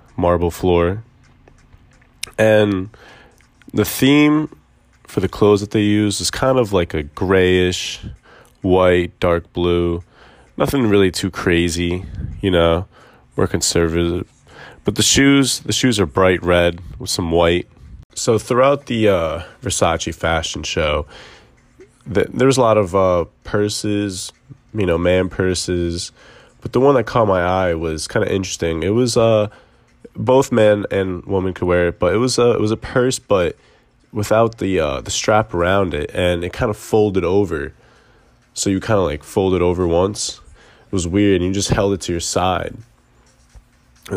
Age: 20-39